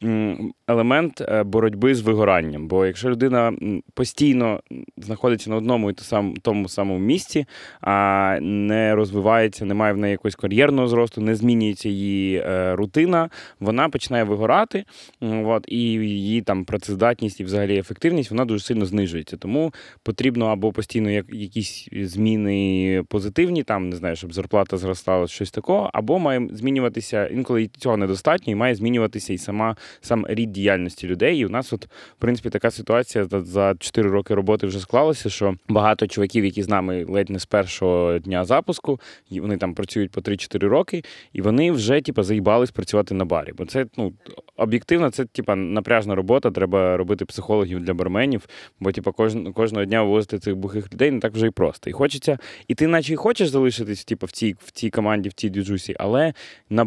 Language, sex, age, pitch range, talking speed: Ukrainian, male, 20-39, 100-120 Hz, 165 wpm